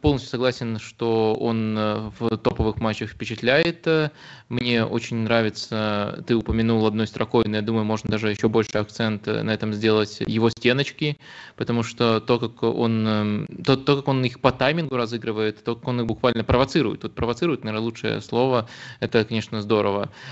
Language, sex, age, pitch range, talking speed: Russian, male, 20-39, 110-125 Hz, 155 wpm